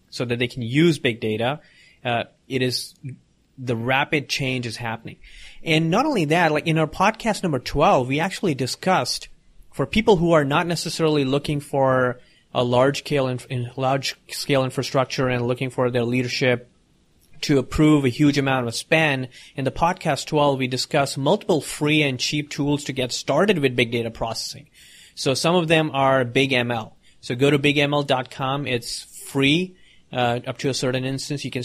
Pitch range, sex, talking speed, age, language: 125-150 Hz, male, 180 wpm, 30-49, English